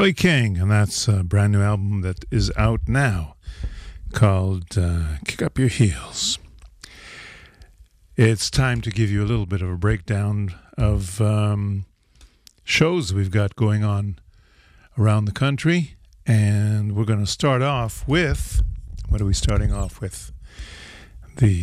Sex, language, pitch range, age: male, English, 95-115 Hz, 50-69